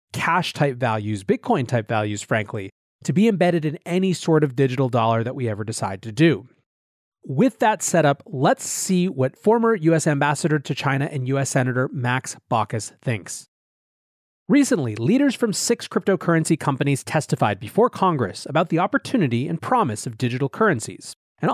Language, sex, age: English, male, 30-49